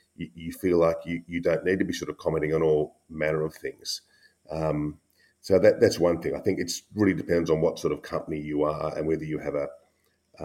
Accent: Australian